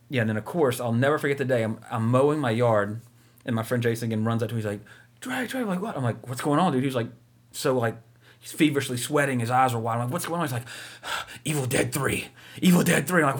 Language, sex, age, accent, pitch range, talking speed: English, male, 30-49, American, 115-140 Hz, 280 wpm